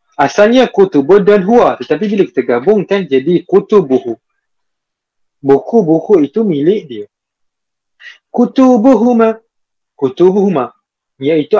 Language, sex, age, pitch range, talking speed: Malay, male, 50-69, 140-210 Hz, 90 wpm